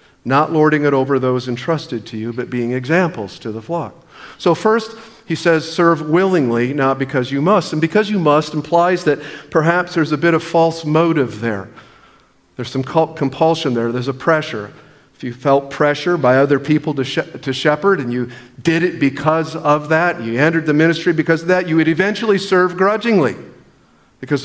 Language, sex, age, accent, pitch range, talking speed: English, male, 50-69, American, 135-180 Hz, 185 wpm